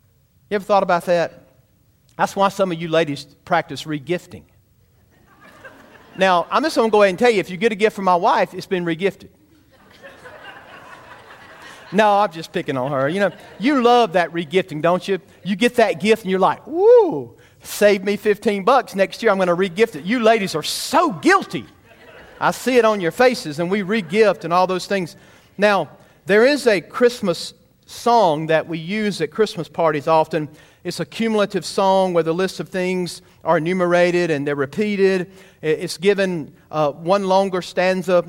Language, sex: English, male